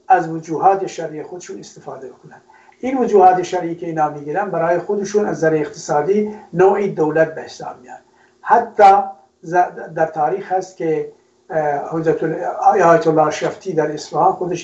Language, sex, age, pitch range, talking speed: Persian, male, 60-79, 155-190 Hz, 125 wpm